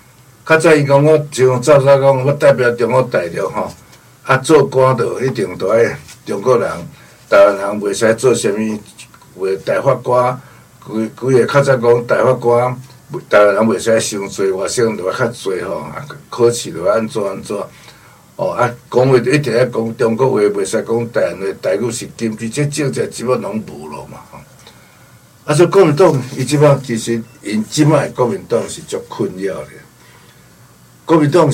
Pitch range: 115-140 Hz